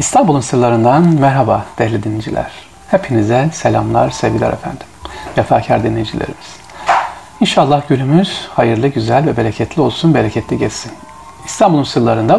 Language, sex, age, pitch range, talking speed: Turkish, male, 40-59, 115-170 Hz, 105 wpm